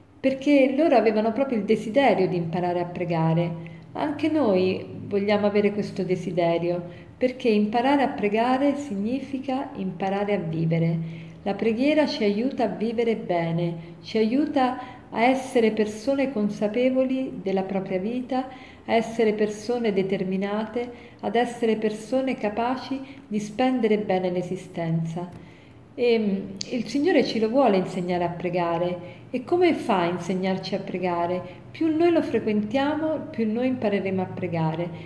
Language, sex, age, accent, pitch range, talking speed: Italian, female, 40-59, native, 185-250 Hz, 130 wpm